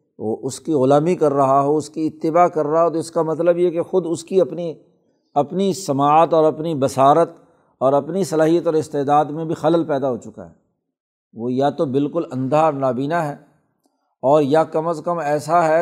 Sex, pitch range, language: male, 140-165 Hz, Urdu